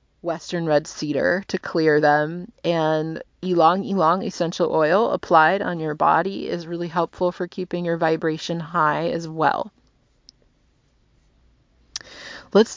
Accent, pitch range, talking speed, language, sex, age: American, 160-190 Hz, 120 wpm, English, female, 30-49